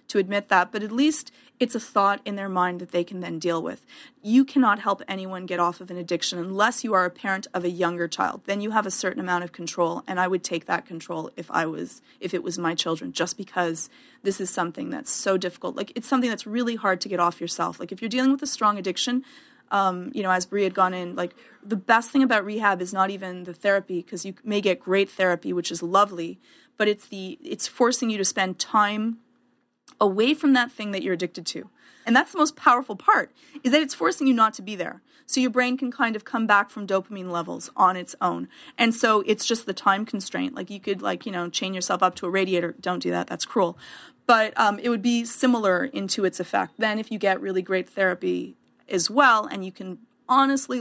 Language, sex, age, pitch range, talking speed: English, female, 30-49, 185-240 Hz, 240 wpm